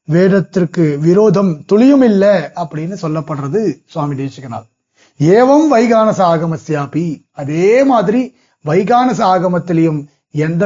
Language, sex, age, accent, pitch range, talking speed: Tamil, male, 30-49, native, 150-190 Hz, 90 wpm